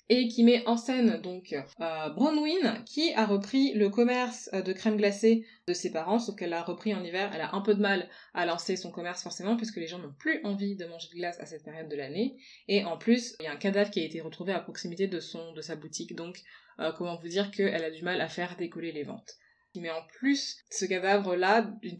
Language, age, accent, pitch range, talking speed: French, 20-39, French, 175-220 Hz, 245 wpm